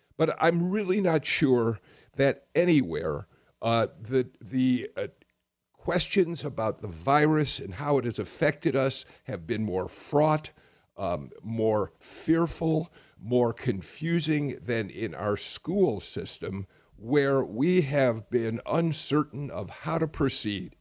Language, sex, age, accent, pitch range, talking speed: English, male, 50-69, American, 110-145 Hz, 130 wpm